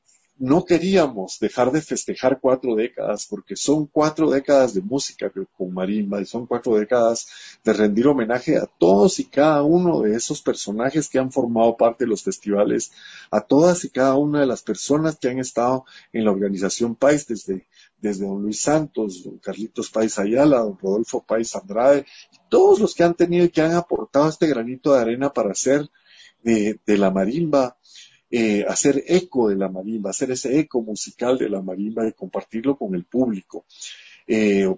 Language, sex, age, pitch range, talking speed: Spanish, male, 50-69, 105-145 Hz, 180 wpm